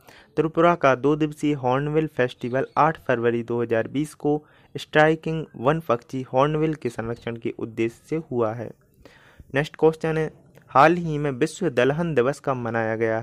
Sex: male